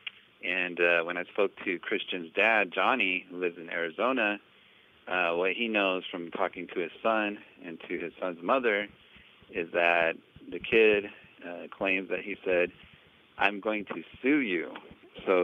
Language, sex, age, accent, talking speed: English, male, 40-59, American, 165 wpm